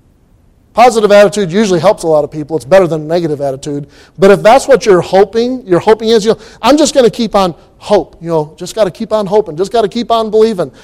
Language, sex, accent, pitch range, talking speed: English, male, American, 175-225 Hz, 255 wpm